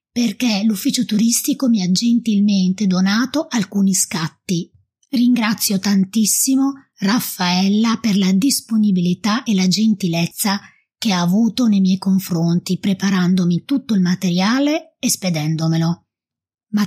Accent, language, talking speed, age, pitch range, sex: native, Italian, 110 wpm, 20-39, 180-230 Hz, female